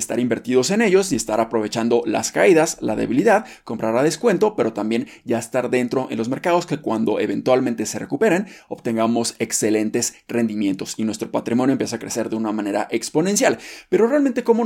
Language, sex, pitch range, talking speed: Spanish, male, 125-175 Hz, 175 wpm